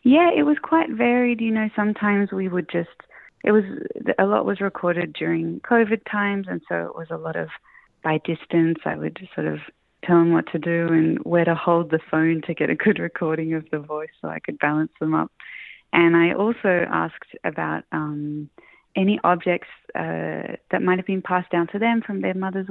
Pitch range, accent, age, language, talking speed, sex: 155-180 Hz, Australian, 20-39, English, 210 wpm, female